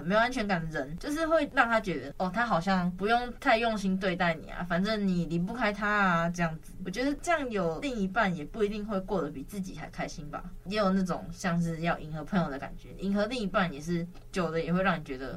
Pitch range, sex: 165-210 Hz, female